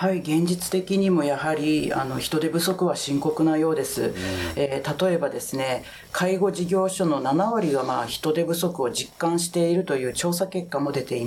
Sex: female